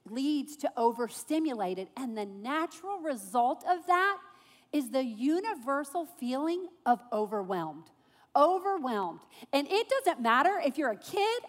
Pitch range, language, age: 230-335 Hz, English, 40-59